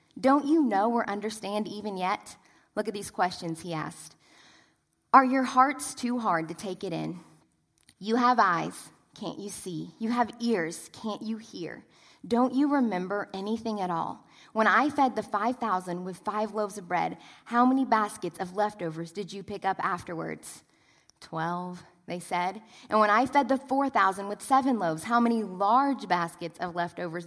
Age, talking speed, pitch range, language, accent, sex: 20-39, 170 wpm, 175-215 Hz, English, American, female